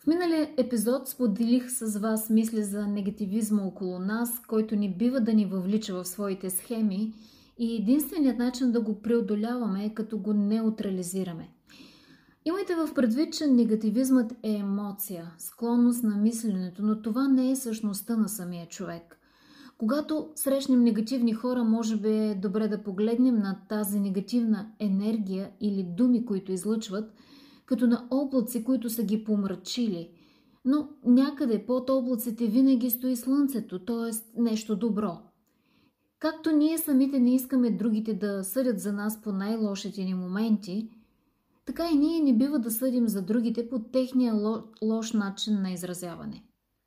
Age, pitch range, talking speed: 30-49, 205-255 Hz, 145 wpm